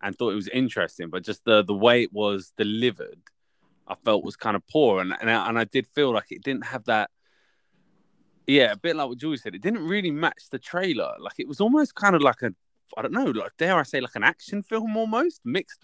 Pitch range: 105-155 Hz